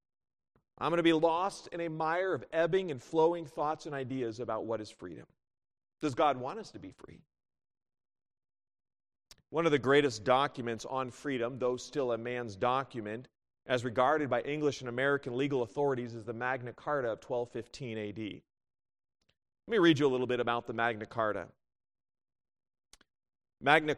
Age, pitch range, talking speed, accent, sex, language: 40-59, 125-160 Hz, 165 wpm, American, male, English